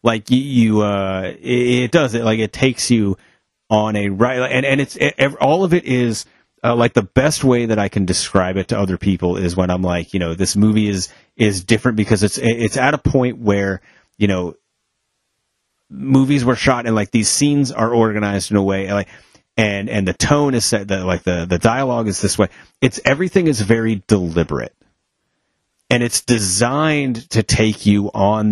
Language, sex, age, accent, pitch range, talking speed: English, male, 30-49, American, 95-120 Hz, 195 wpm